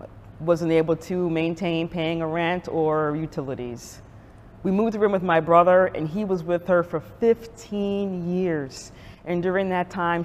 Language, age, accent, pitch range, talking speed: English, 40-59, American, 145-195 Hz, 160 wpm